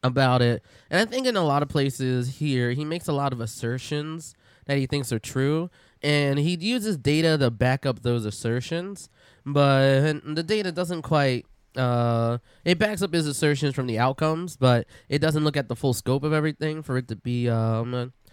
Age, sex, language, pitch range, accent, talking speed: 20-39, male, English, 125-150 Hz, American, 195 wpm